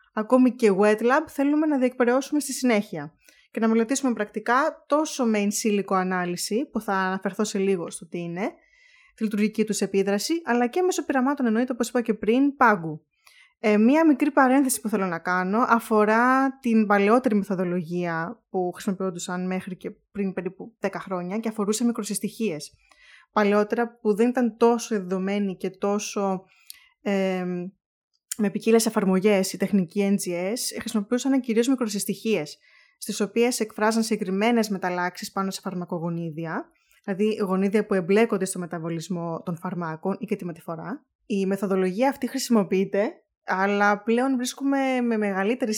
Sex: female